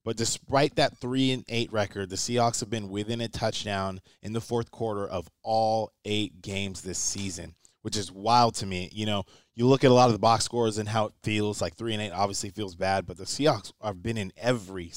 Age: 20-39